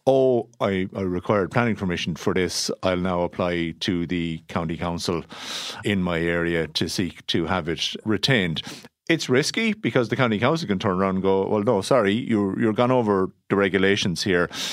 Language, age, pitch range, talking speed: English, 50-69, 90-115 Hz, 185 wpm